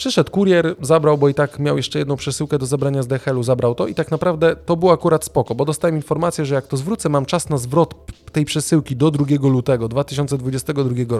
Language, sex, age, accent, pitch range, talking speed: Polish, male, 20-39, native, 130-160 Hz, 215 wpm